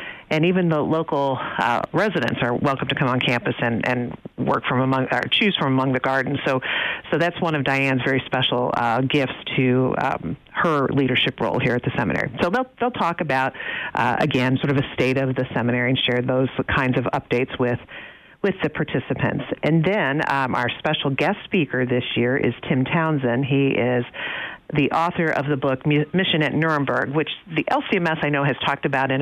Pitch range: 130-150 Hz